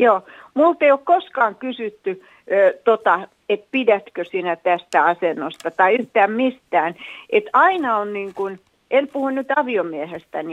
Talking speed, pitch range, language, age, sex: 135 wpm, 195-290 Hz, Finnish, 60-79, female